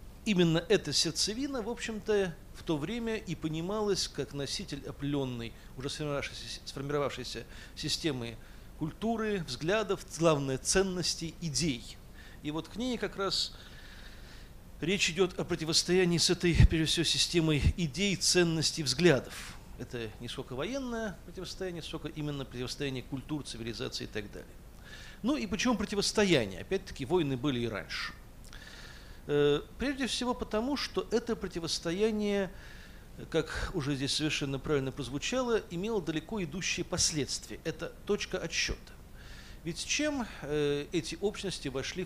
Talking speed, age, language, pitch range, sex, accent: 125 wpm, 40-59, Russian, 130-185 Hz, male, native